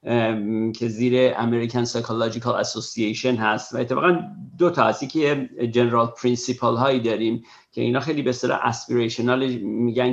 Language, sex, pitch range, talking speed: Persian, male, 120-140 Hz, 135 wpm